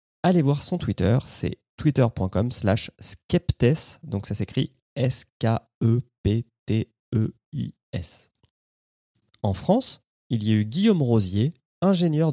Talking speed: 125 wpm